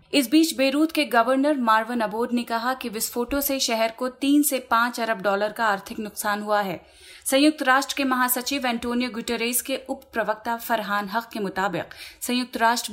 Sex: female